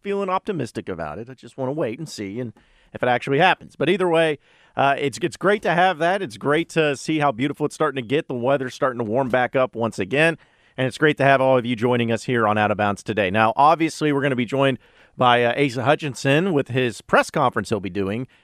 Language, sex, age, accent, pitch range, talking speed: English, male, 40-59, American, 115-155 Hz, 255 wpm